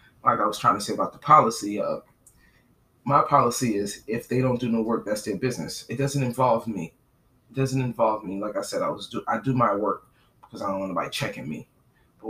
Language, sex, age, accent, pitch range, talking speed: English, male, 20-39, American, 110-130 Hz, 235 wpm